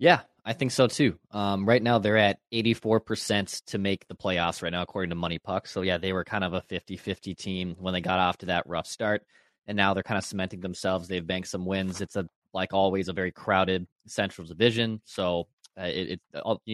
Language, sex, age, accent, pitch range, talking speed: English, male, 20-39, American, 90-105 Hz, 230 wpm